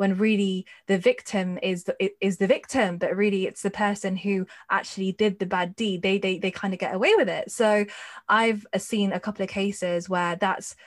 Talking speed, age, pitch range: 210 wpm, 10-29, 175-195 Hz